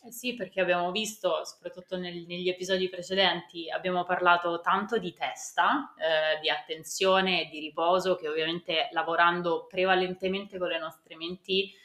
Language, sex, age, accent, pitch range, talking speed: Italian, female, 20-39, native, 165-195 Hz, 140 wpm